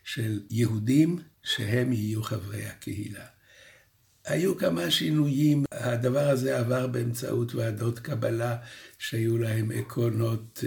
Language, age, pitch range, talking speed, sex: Hebrew, 60-79, 115-140 Hz, 100 wpm, male